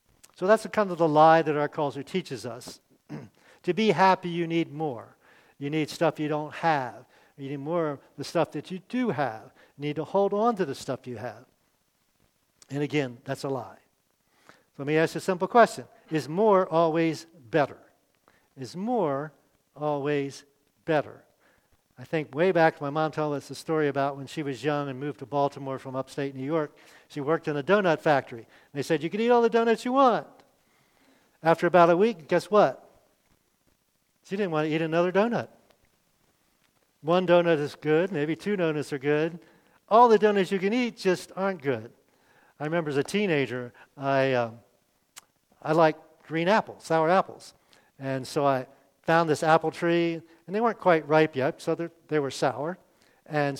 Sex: male